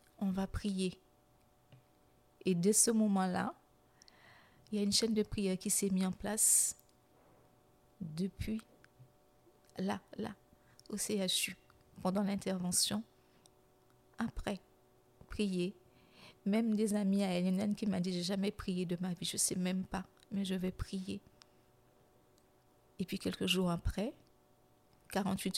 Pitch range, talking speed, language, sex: 170-200 Hz, 135 wpm, French, female